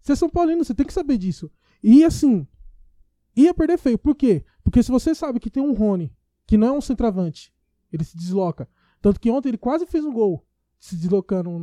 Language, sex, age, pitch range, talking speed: Portuguese, male, 20-39, 190-270 Hz, 215 wpm